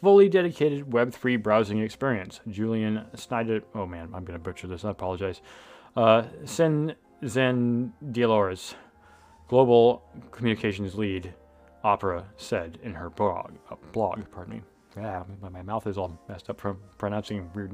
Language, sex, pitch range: English, male, 100-130 Hz